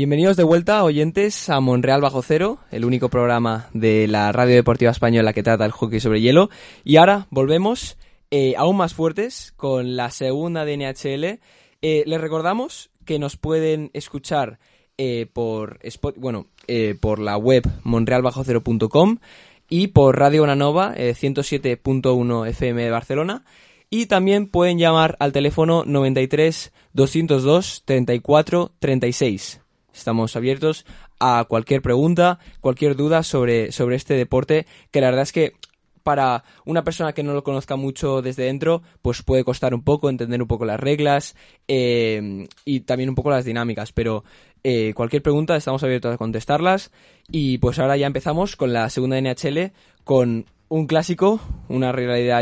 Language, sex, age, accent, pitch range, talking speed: Spanish, male, 20-39, Spanish, 120-155 Hz, 150 wpm